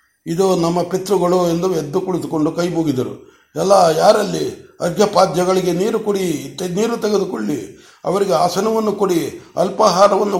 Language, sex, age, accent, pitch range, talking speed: Kannada, male, 60-79, native, 155-185 Hz, 105 wpm